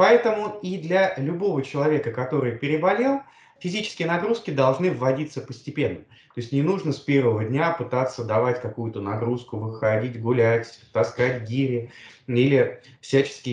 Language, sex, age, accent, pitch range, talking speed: Russian, male, 20-39, native, 130-175 Hz, 130 wpm